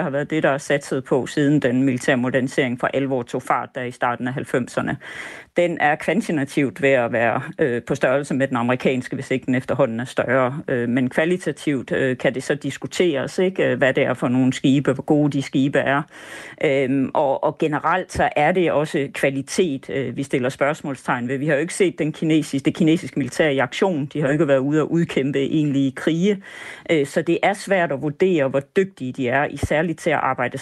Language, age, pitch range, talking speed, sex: Danish, 50-69, 130-155 Hz, 215 wpm, female